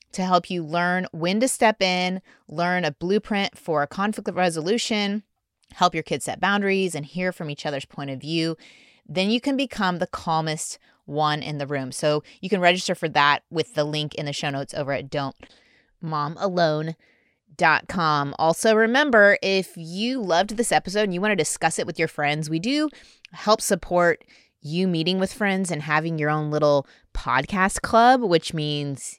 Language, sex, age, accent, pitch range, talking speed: English, female, 20-39, American, 145-190 Hz, 180 wpm